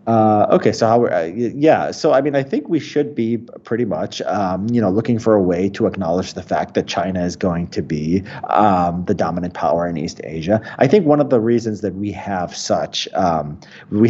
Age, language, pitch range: 30-49, English, 90-115 Hz